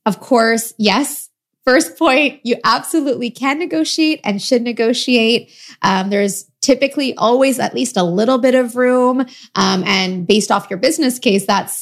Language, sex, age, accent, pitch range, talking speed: English, female, 20-39, American, 190-250 Hz, 155 wpm